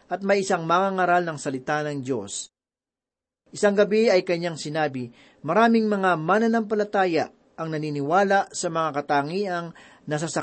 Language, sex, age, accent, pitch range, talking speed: Filipino, male, 40-59, native, 150-200 Hz, 140 wpm